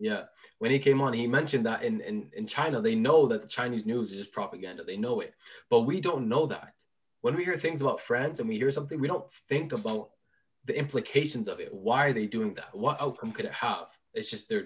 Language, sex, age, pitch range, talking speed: English, male, 20-39, 125-205 Hz, 240 wpm